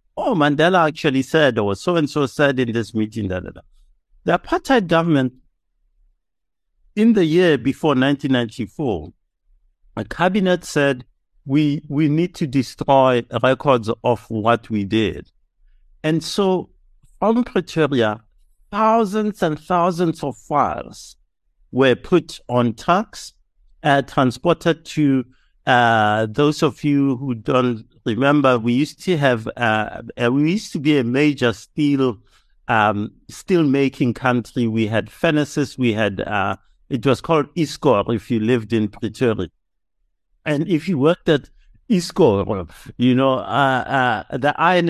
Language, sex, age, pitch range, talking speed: English, male, 60-79, 115-155 Hz, 135 wpm